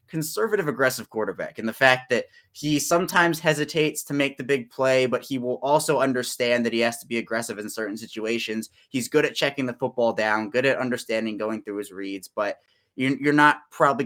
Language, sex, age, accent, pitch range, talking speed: English, male, 20-39, American, 110-140 Hz, 200 wpm